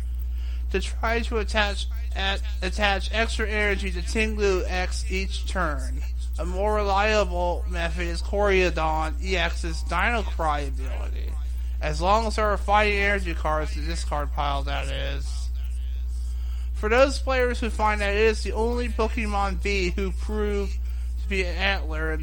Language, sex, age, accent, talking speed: English, male, 30-49, American, 150 wpm